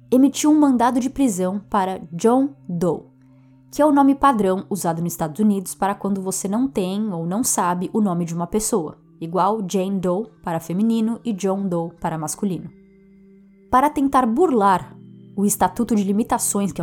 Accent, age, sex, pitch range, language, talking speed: Brazilian, 20-39, female, 175-235 Hz, Portuguese, 170 wpm